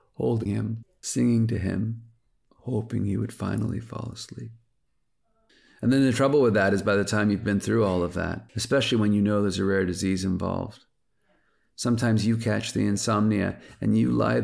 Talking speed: 185 wpm